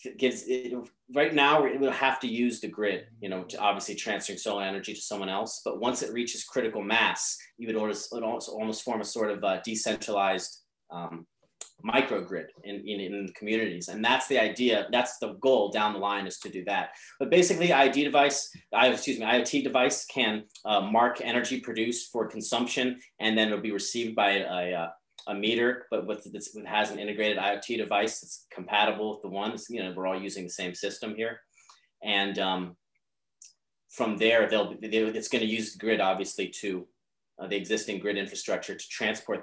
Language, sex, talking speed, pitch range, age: English, male, 195 wpm, 100-120 Hz, 30-49